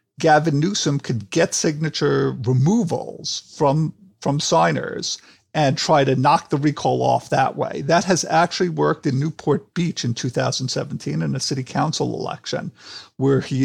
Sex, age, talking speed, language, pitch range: male, 50-69, 150 wpm, English, 135-165 Hz